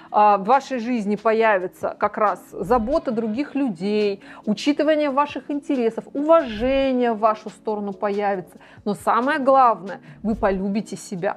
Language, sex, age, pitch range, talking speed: Russian, female, 30-49, 205-260 Hz, 120 wpm